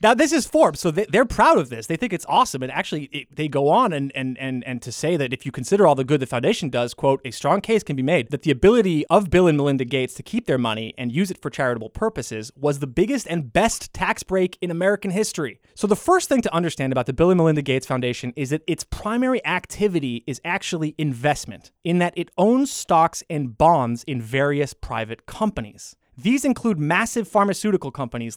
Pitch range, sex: 135-190 Hz, male